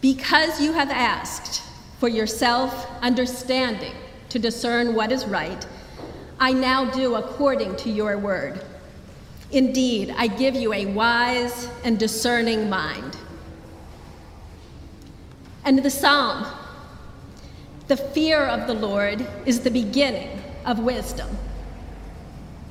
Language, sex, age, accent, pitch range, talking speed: English, female, 40-59, American, 215-275 Hz, 110 wpm